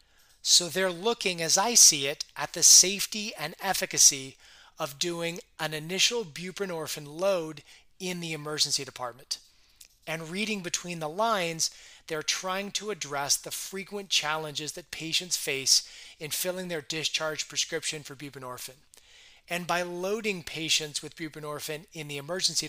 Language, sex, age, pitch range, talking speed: English, male, 30-49, 145-180 Hz, 140 wpm